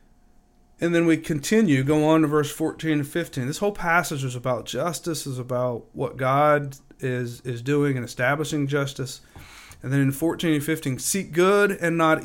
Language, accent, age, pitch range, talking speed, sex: English, American, 40-59, 130-160 Hz, 180 wpm, male